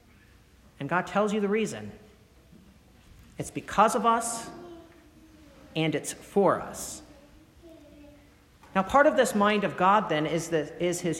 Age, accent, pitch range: 50-69, American, 150-200 Hz